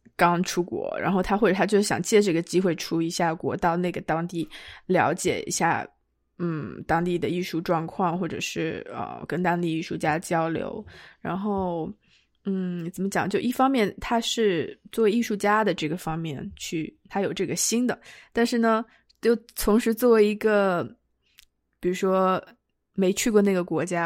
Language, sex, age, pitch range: Chinese, female, 20-39, 175-215 Hz